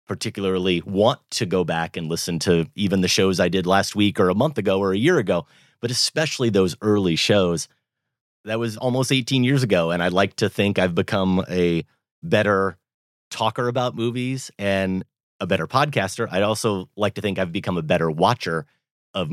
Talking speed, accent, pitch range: 190 wpm, American, 90-115 Hz